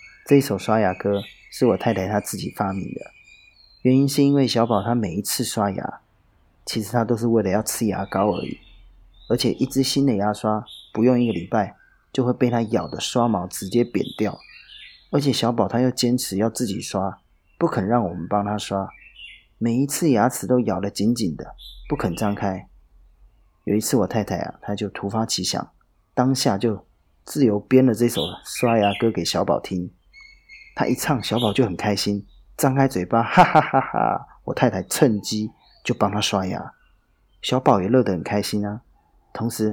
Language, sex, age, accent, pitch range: Chinese, male, 30-49, native, 100-125 Hz